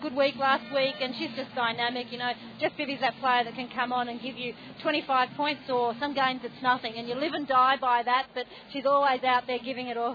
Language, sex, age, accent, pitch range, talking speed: English, female, 40-59, Australian, 240-280 Hz, 255 wpm